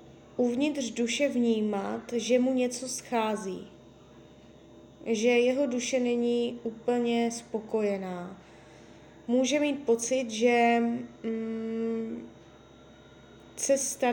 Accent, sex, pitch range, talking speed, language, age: native, female, 225-255 Hz, 80 wpm, Czech, 20-39